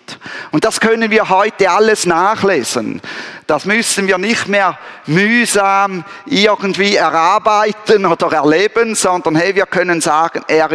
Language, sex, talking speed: German, male, 125 wpm